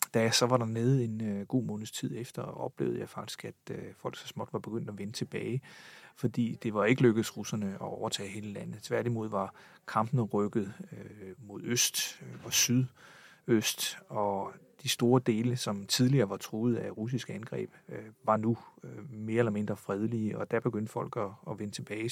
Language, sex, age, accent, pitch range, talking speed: Danish, male, 40-59, native, 105-125 Hz, 190 wpm